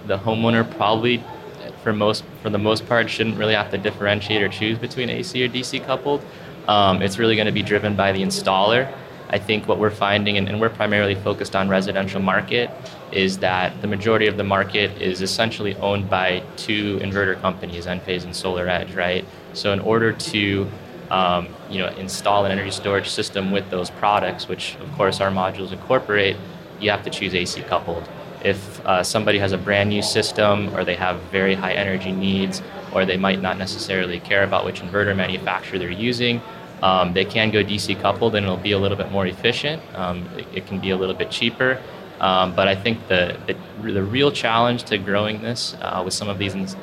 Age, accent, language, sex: 20-39, American, English, male